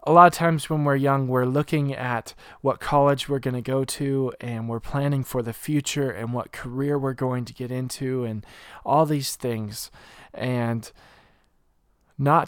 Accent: American